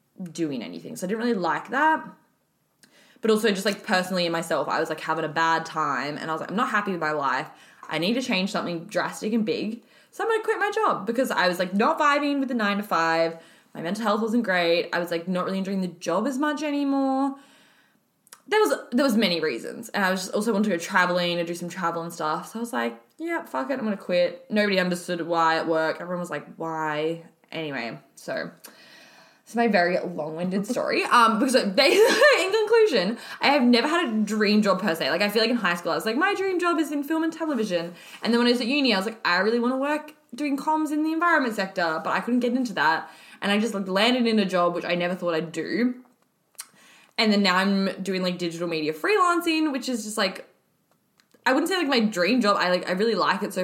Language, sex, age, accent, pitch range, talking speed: English, female, 20-39, Australian, 175-255 Hz, 245 wpm